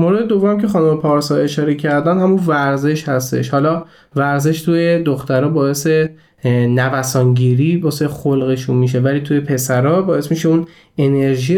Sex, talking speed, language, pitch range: male, 140 wpm, Persian, 130-175 Hz